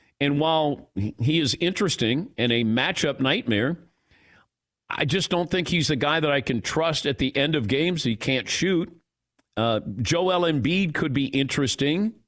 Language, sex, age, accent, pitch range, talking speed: English, male, 50-69, American, 120-165 Hz, 165 wpm